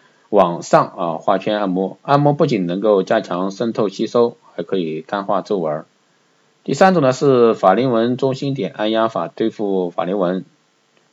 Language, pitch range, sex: Chinese, 95-125 Hz, male